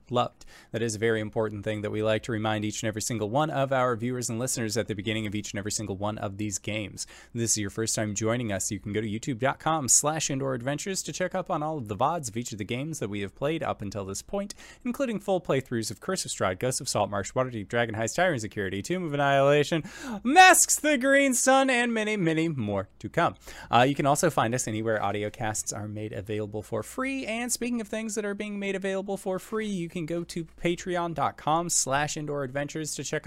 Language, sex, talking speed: English, male, 245 wpm